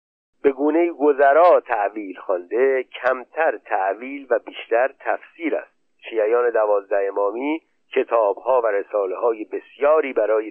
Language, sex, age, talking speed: Persian, male, 50-69, 110 wpm